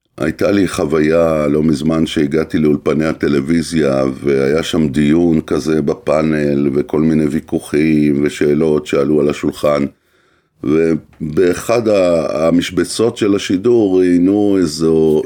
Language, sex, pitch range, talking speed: Hebrew, male, 80-100 Hz, 100 wpm